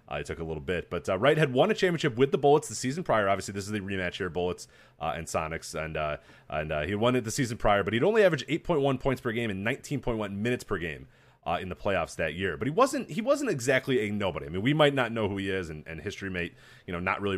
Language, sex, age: English, male, 30-49